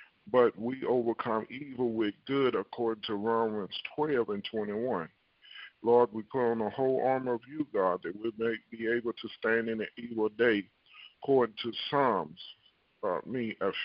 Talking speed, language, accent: 165 wpm, English, American